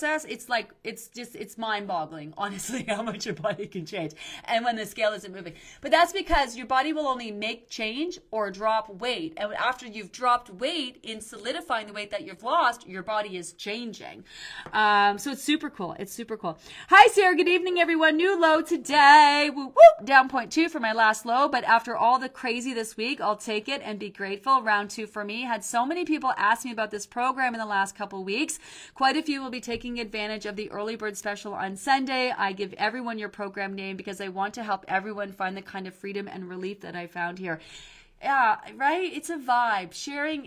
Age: 30-49